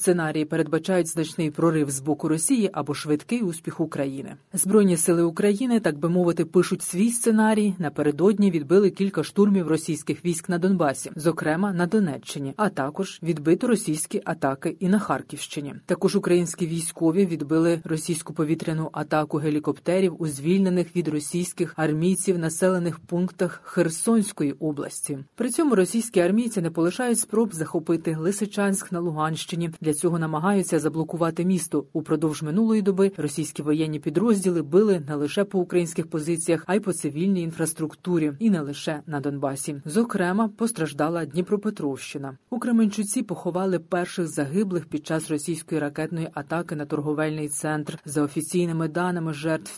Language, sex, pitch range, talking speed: Ukrainian, female, 155-185 Hz, 140 wpm